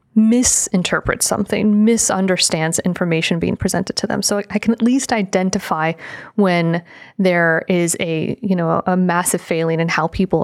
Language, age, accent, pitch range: English, 30-49, American, 180-215 Hz